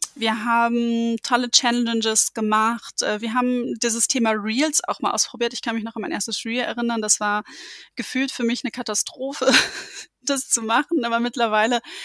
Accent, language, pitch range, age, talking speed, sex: German, German, 220-255 Hz, 20-39, 170 wpm, female